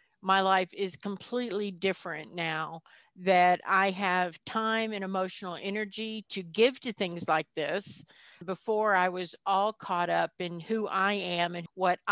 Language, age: English, 50-69